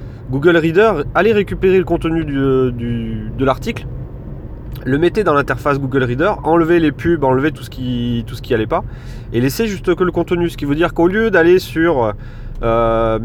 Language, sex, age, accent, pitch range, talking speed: French, male, 30-49, French, 125-160 Hz, 180 wpm